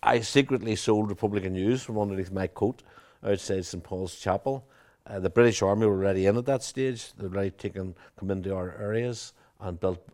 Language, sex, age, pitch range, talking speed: English, male, 60-79, 95-110 Hz, 190 wpm